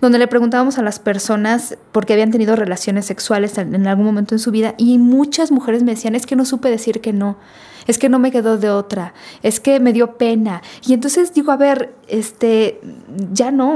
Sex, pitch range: female, 210-255 Hz